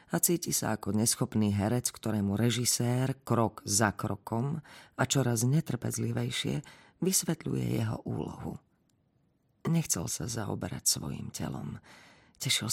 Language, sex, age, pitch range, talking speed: Slovak, female, 40-59, 105-140 Hz, 110 wpm